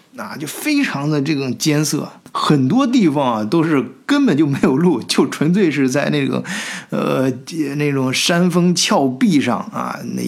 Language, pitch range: Chinese, 130-180 Hz